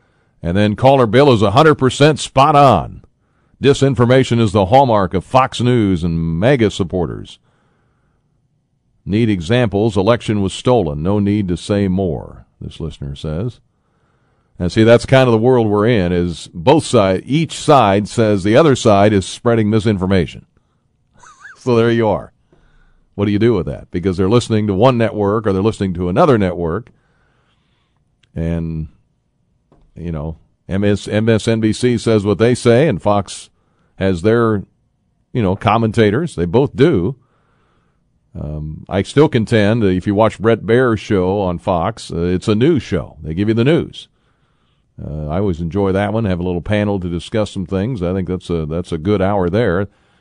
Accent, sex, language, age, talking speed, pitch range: American, male, English, 50-69, 165 wpm, 95-120 Hz